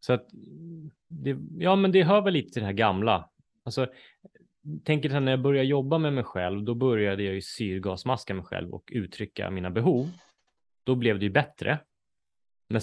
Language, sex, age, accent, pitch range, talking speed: Swedish, male, 20-39, native, 100-140 Hz, 180 wpm